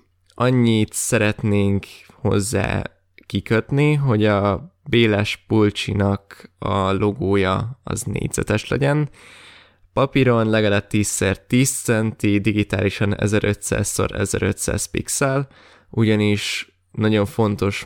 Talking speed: 80 wpm